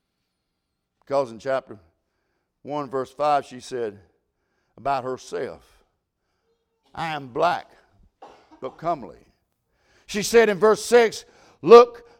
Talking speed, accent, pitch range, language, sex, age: 105 wpm, American, 180-270 Hz, English, male, 60-79